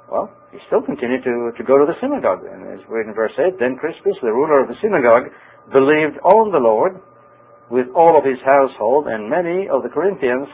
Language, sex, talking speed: English, male, 215 wpm